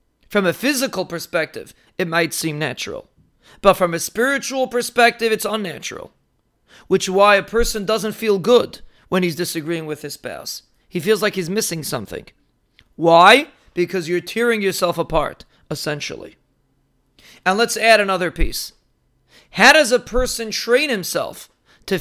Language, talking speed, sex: English, 145 wpm, male